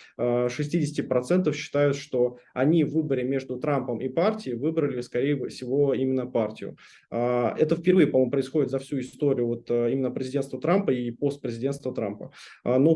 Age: 20-39